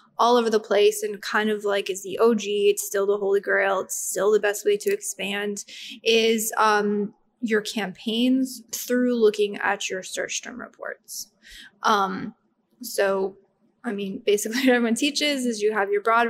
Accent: American